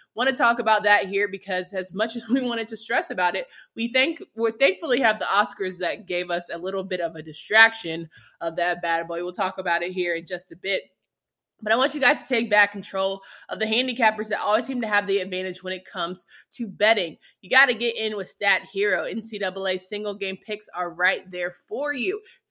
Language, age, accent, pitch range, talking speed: English, 20-39, American, 180-230 Hz, 230 wpm